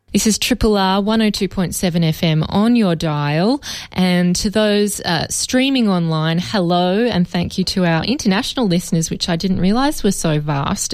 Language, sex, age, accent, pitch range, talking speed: English, female, 20-39, Australian, 165-200 Hz, 160 wpm